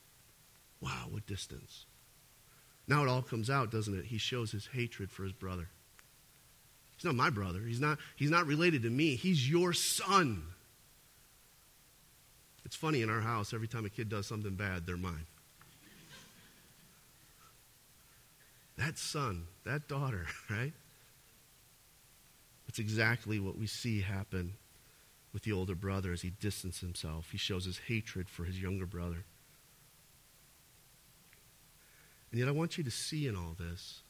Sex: male